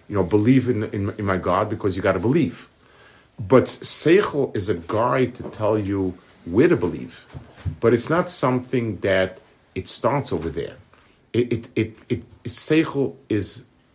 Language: English